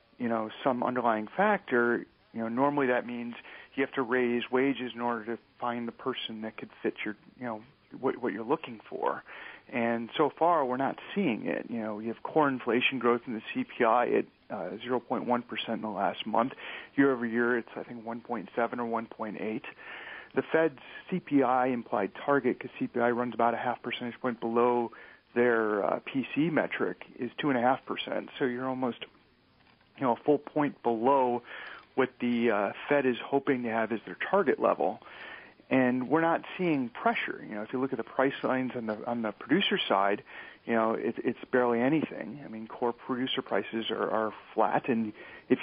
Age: 40-59